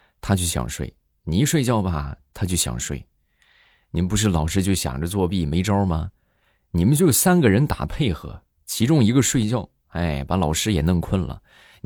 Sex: male